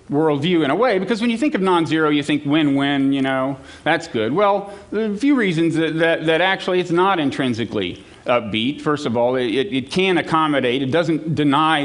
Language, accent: Chinese, American